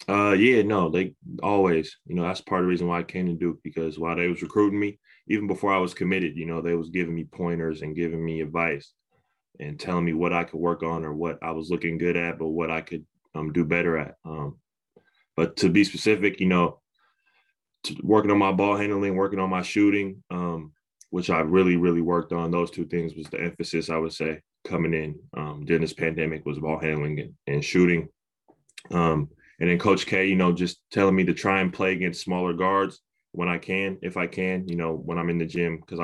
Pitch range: 80-90 Hz